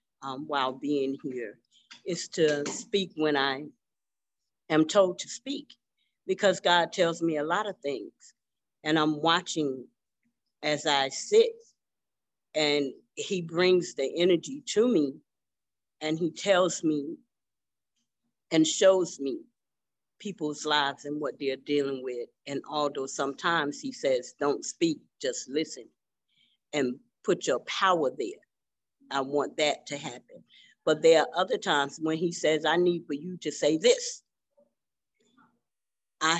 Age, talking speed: 40-59, 135 wpm